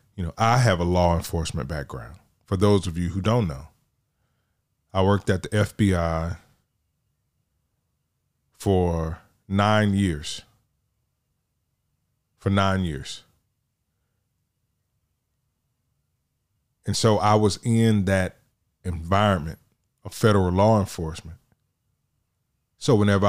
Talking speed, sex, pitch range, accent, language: 100 wpm, male, 90-115 Hz, American, English